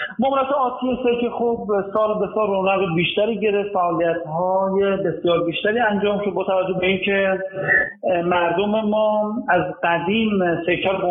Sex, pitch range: male, 170-205 Hz